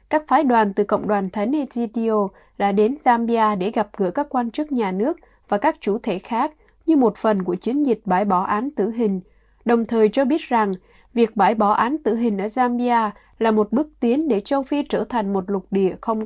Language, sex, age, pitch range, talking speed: Vietnamese, female, 20-39, 205-255 Hz, 225 wpm